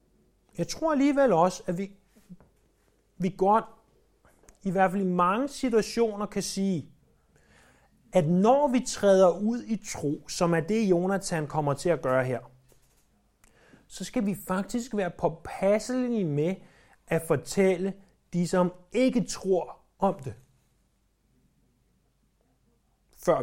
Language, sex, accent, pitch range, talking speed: Danish, male, native, 170-225 Hz, 125 wpm